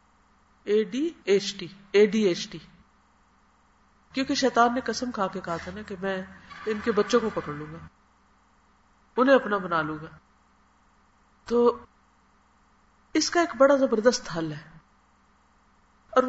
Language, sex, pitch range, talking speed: Urdu, female, 180-255 Hz, 125 wpm